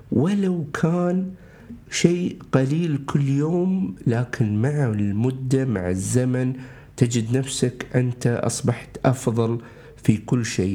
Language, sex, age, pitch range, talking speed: Arabic, male, 50-69, 120-155 Hz, 105 wpm